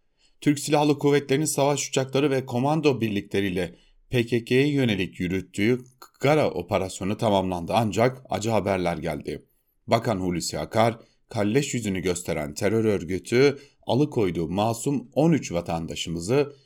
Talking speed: 110 wpm